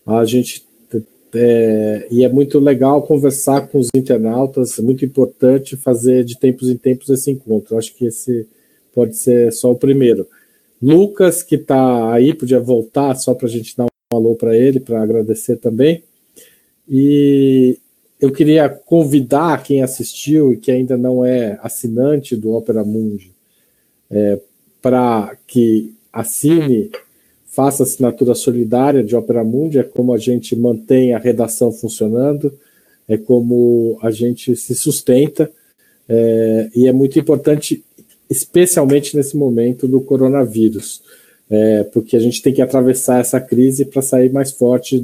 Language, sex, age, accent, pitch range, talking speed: Portuguese, male, 50-69, Brazilian, 115-140 Hz, 145 wpm